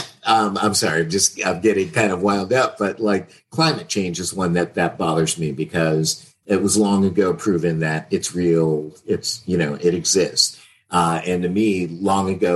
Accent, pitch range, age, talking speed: American, 80-100 Hz, 50-69, 195 wpm